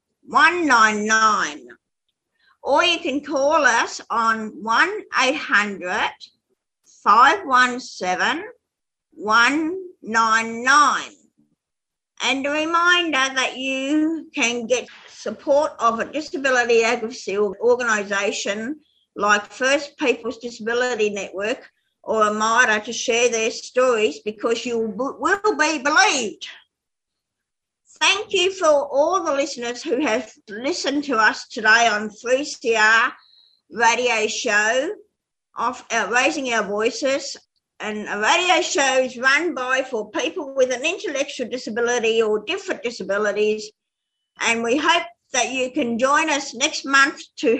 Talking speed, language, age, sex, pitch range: 110 wpm, English, 50-69, female, 225-295 Hz